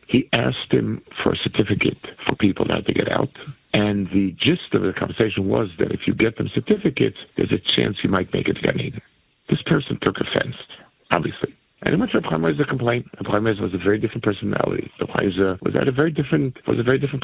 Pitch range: 100-130 Hz